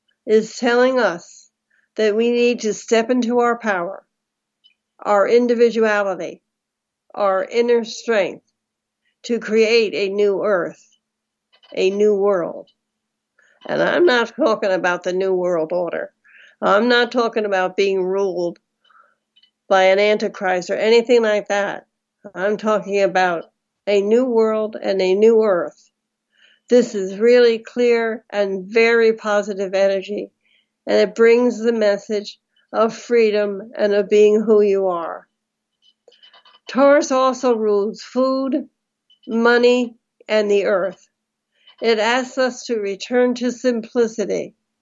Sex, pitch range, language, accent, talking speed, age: female, 200-235 Hz, English, American, 125 wpm, 60-79